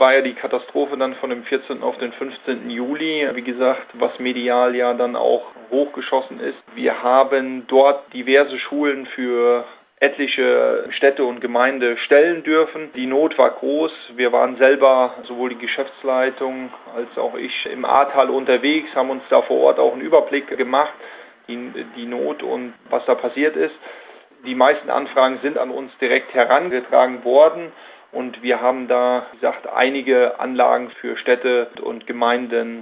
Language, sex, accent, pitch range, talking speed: German, male, German, 125-140 Hz, 160 wpm